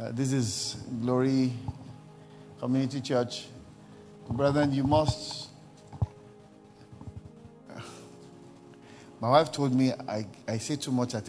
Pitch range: 115-150 Hz